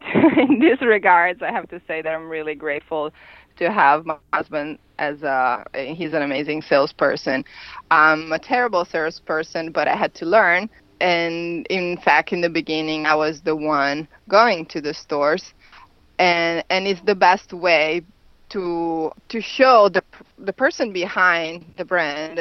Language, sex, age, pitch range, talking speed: English, female, 20-39, 155-190 Hz, 155 wpm